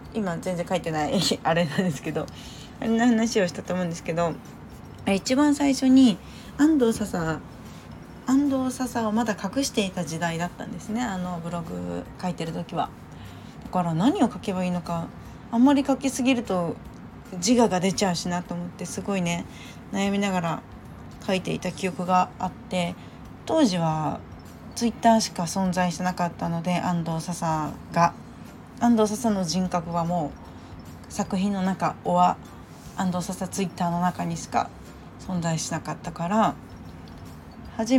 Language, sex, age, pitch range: Japanese, female, 20-39, 170-220 Hz